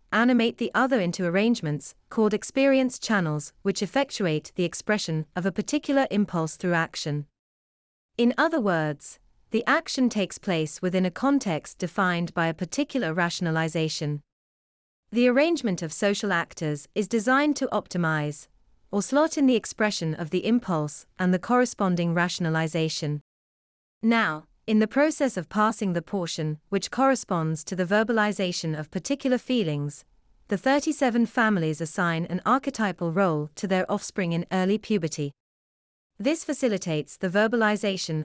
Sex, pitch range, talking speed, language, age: female, 160-230 Hz, 135 wpm, English, 30-49